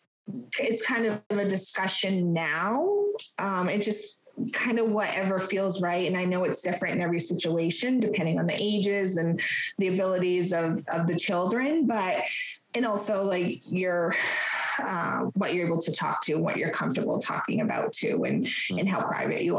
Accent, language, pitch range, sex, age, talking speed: American, English, 170-205 Hz, female, 20-39, 170 wpm